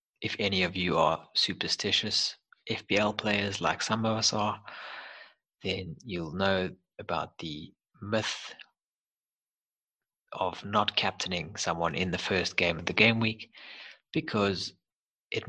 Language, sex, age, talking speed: English, male, 30-49, 130 wpm